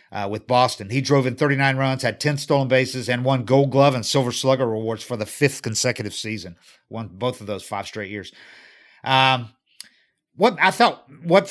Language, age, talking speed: English, 50-69, 195 wpm